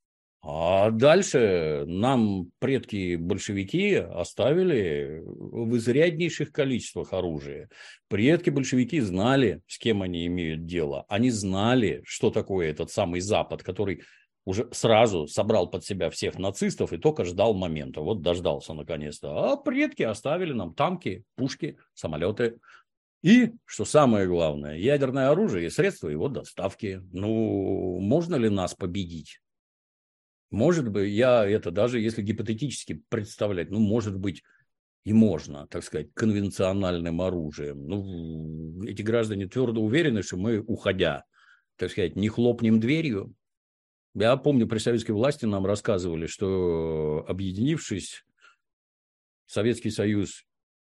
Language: Russian